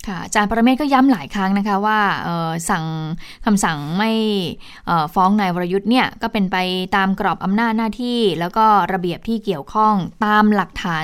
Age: 20-39